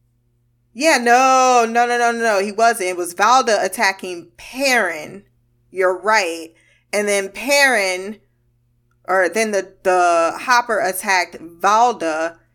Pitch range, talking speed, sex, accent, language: 170-225 Hz, 120 wpm, female, American, English